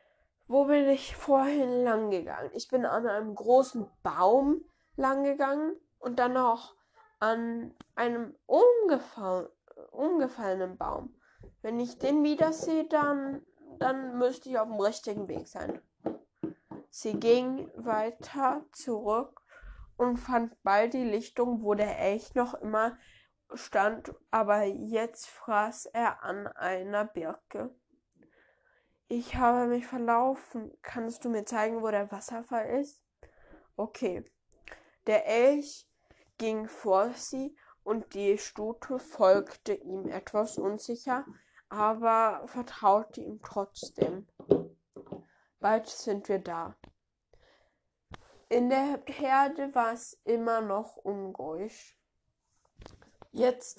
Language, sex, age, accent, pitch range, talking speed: German, female, 20-39, German, 215-270 Hz, 110 wpm